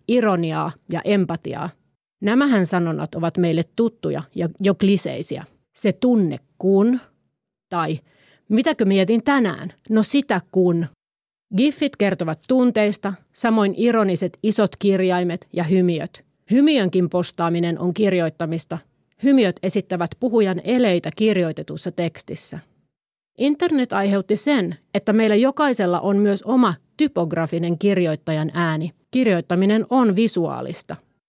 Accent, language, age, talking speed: native, Finnish, 30-49, 105 wpm